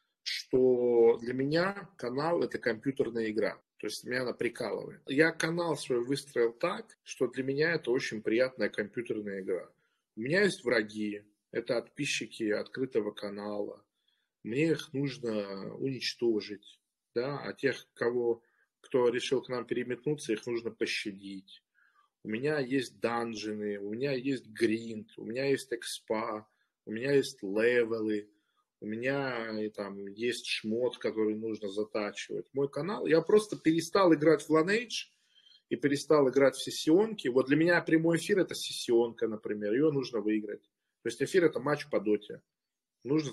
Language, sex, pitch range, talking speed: Russian, male, 110-150 Hz, 150 wpm